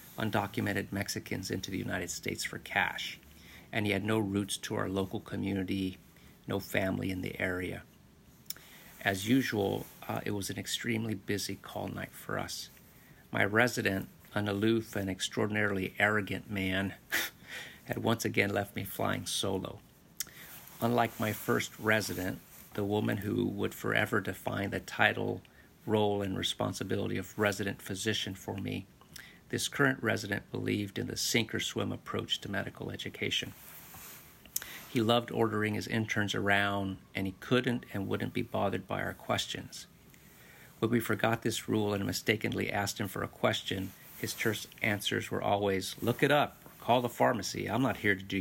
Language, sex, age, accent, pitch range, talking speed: English, male, 50-69, American, 95-115 Hz, 155 wpm